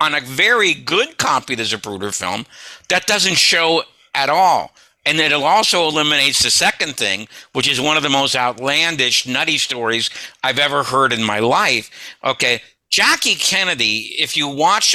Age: 60-79